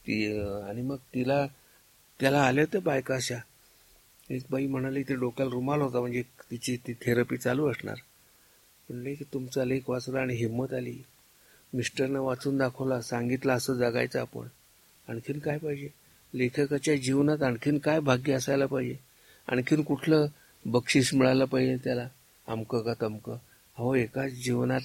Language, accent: Marathi, native